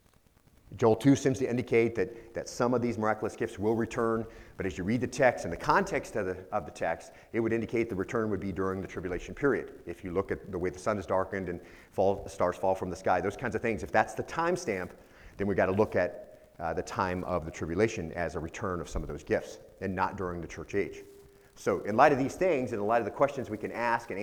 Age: 40-59